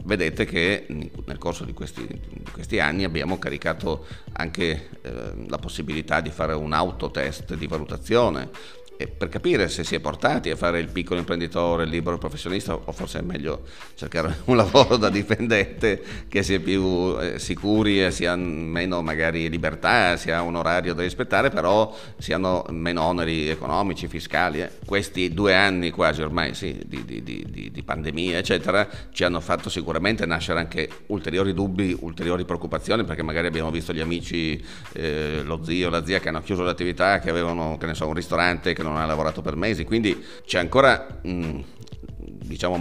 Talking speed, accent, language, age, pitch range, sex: 170 wpm, native, Italian, 40-59, 80-95 Hz, male